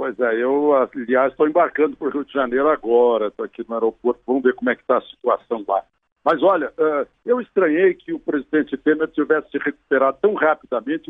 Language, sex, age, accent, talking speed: Portuguese, male, 60-79, Brazilian, 205 wpm